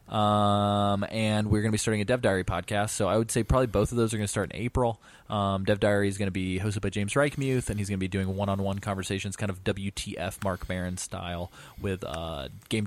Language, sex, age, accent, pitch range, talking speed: English, male, 20-39, American, 95-110 Hz, 245 wpm